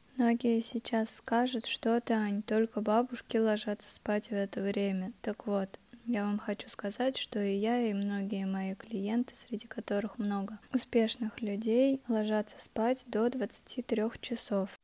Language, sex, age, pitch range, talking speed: Russian, female, 20-39, 205-235 Hz, 140 wpm